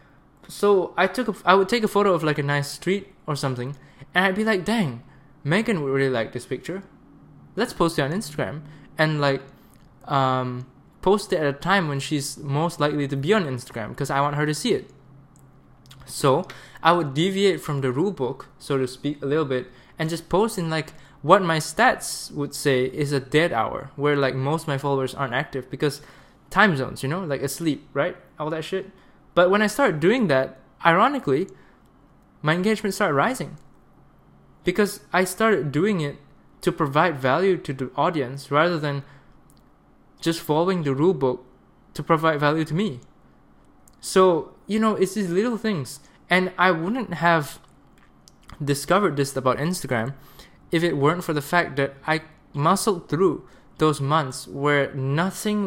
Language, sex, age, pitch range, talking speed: English, male, 20-39, 140-180 Hz, 175 wpm